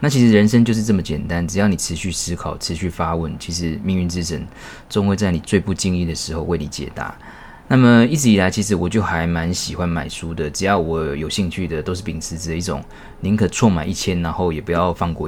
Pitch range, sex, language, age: 80-100 Hz, male, Chinese, 20-39